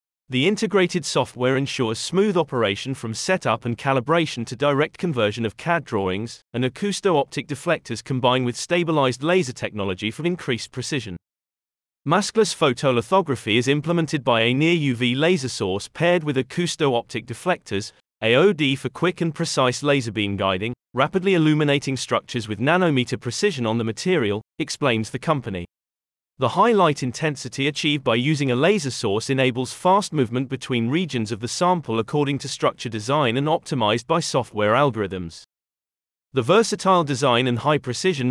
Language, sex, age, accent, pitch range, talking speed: English, male, 30-49, British, 115-165 Hz, 145 wpm